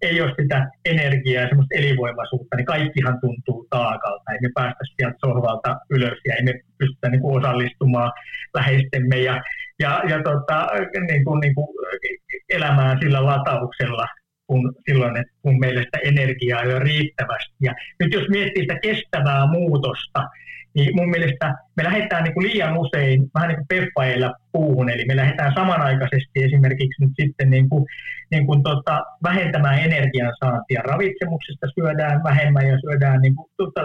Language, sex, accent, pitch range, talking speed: Finnish, male, native, 130-155 Hz, 145 wpm